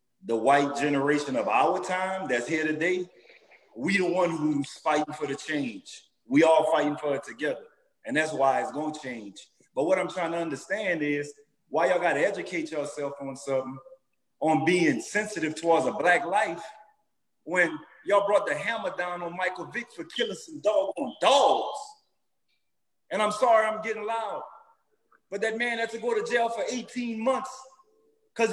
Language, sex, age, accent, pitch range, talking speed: English, male, 30-49, American, 180-270 Hz, 175 wpm